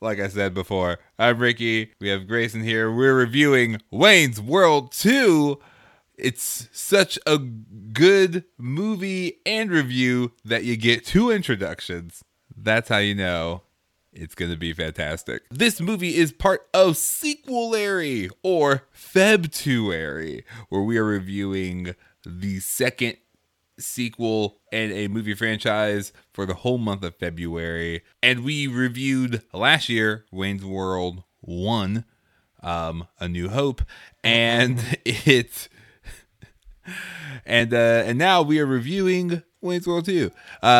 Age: 20-39